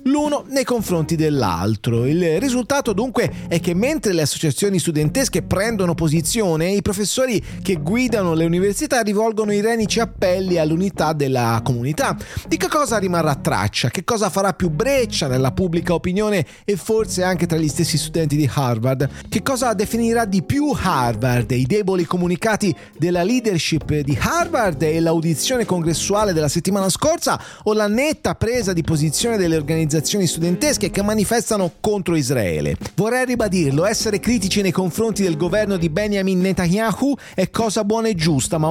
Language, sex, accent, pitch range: English, male, Italian, 160-220 Hz